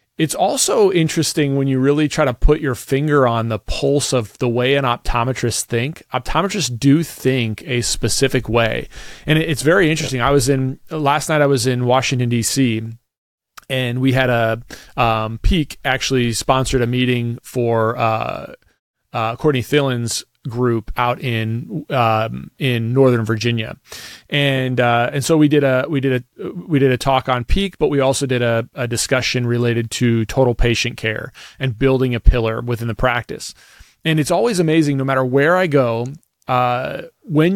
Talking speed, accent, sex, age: 175 wpm, American, male, 30-49